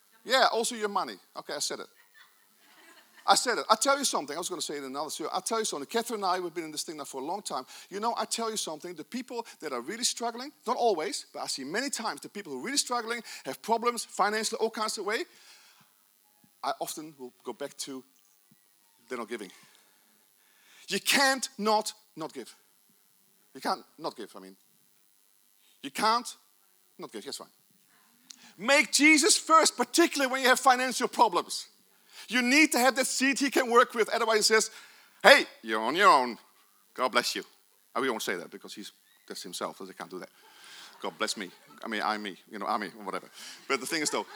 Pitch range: 205-250 Hz